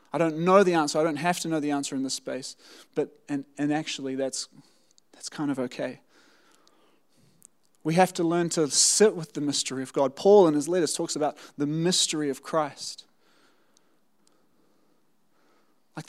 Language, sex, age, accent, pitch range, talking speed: English, male, 20-39, Australian, 155-205 Hz, 170 wpm